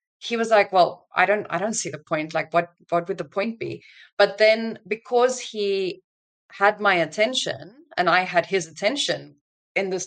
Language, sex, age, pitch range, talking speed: English, female, 20-39, 170-215 Hz, 190 wpm